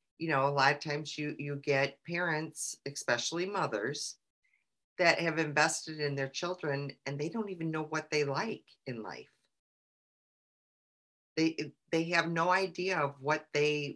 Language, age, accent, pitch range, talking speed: English, 40-59, American, 145-170 Hz, 155 wpm